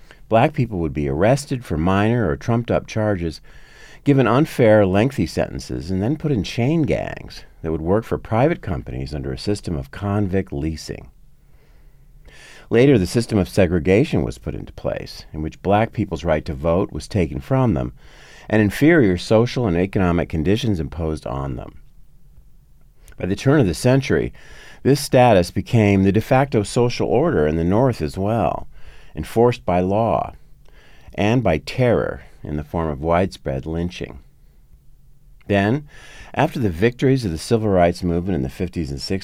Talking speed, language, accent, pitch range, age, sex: 160 wpm, English, American, 80-115 Hz, 50-69, male